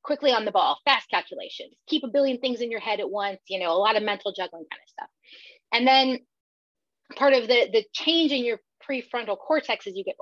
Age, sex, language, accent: 30-49, female, English, American